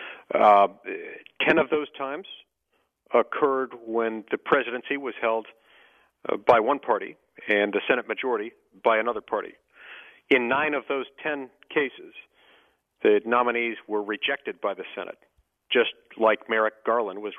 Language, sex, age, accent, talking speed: English, male, 50-69, American, 135 wpm